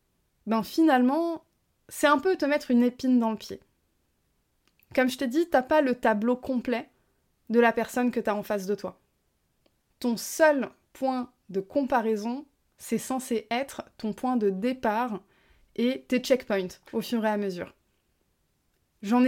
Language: French